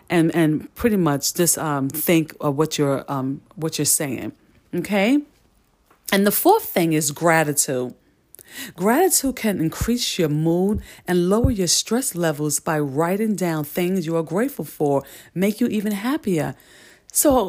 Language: English